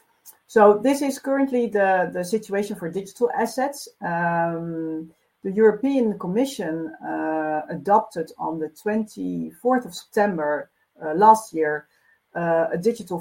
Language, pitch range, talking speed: English, 165-215 Hz, 125 wpm